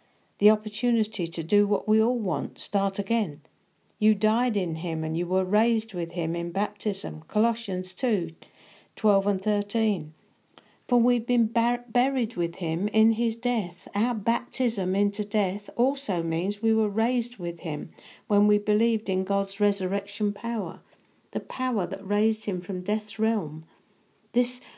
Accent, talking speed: British, 155 wpm